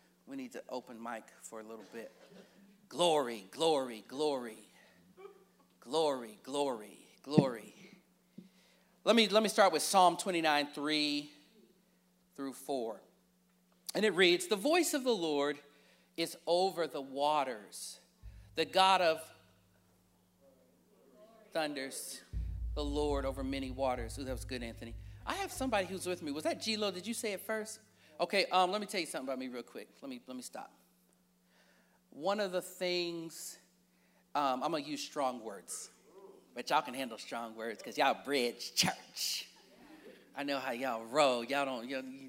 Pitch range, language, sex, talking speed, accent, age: 125-195 Hz, English, male, 155 wpm, American, 40-59